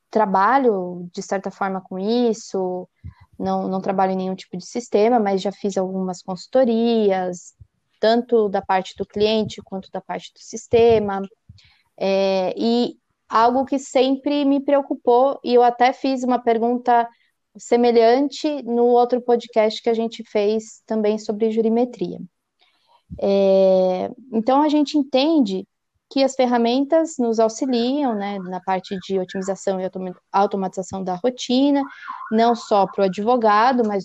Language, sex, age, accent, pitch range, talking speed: Portuguese, female, 20-39, Brazilian, 200-260 Hz, 135 wpm